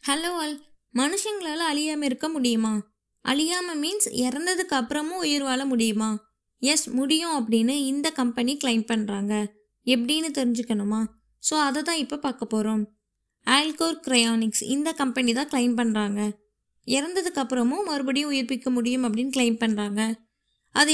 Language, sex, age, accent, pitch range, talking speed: Tamil, female, 20-39, native, 235-295 Hz, 125 wpm